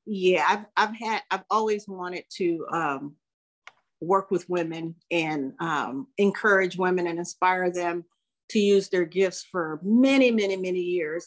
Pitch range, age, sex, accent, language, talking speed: 175-210 Hz, 50-69, female, American, English, 150 wpm